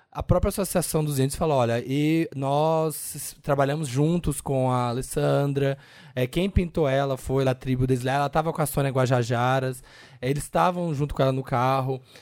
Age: 20-39